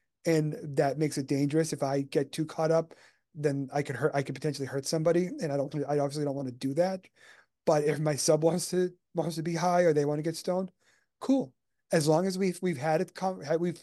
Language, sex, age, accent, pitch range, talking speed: English, male, 30-49, American, 150-180 Hz, 240 wpm